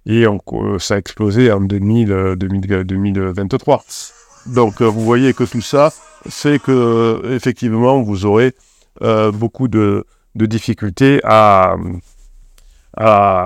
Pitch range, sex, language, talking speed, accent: 100-115 Hz, male, French, 115 wpm, French